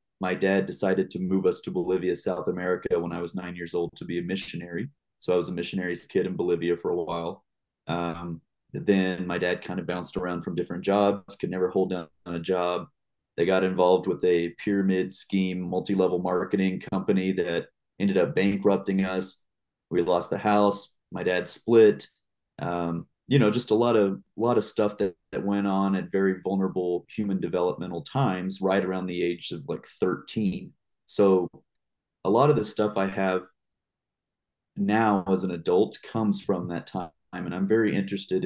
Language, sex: English, male